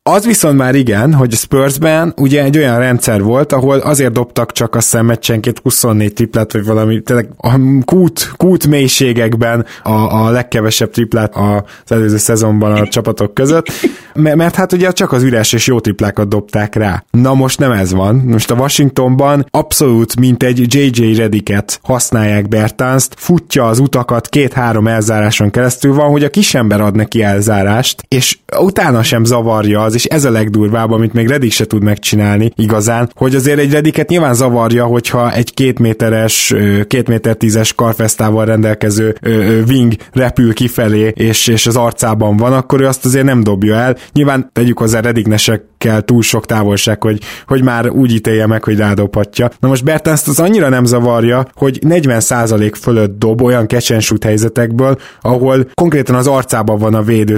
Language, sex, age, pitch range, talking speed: Hungarian, male, 20-39, 110-130 Hz, 160 wpm